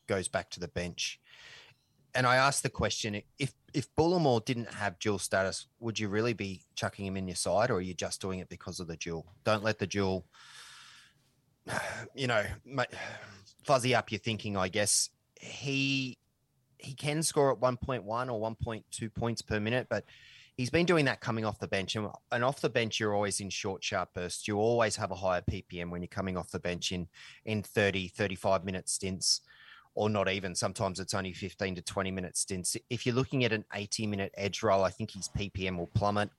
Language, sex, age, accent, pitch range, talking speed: English, male, 30-49, Australian, 95-115 Hz, 200 wpm